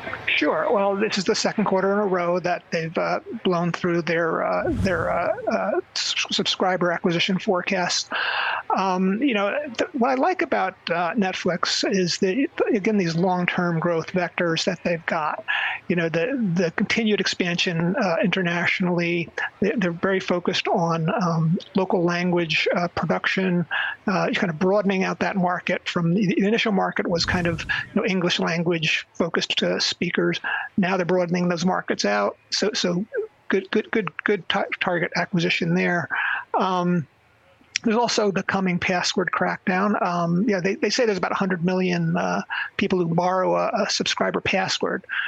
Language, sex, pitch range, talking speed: English, male, 175-205 Hz, 160 wpm